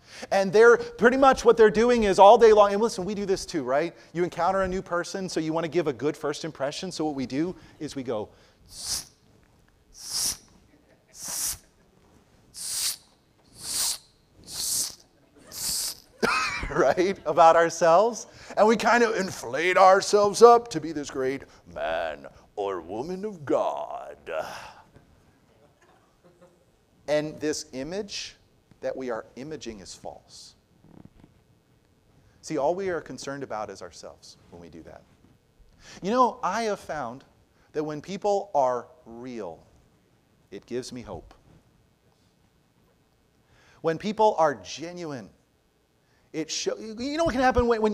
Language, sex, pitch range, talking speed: English, male, 150-220 Hz, 135 wpm